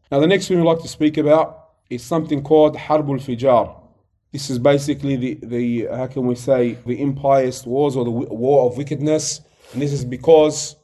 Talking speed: 195 wpm